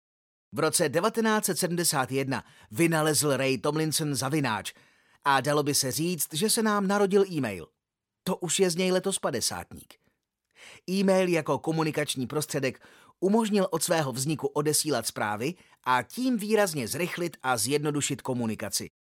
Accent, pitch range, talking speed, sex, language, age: native, 130-185 Hz, 130 wpm, male, Czech, 30-49